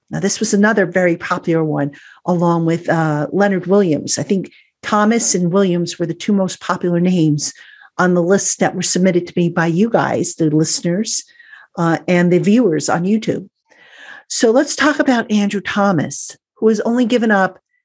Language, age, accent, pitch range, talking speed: English, 50-69, American, 170-215 Hz, 180 wpm